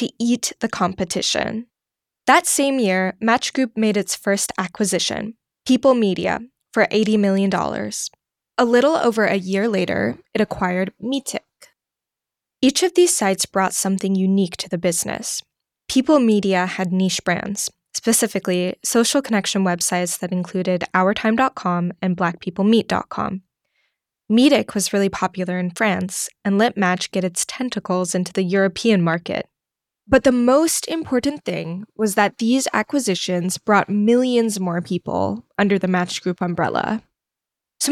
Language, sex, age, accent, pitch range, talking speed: English, female, 10-29, American, 185-235 Hz, 135 wpm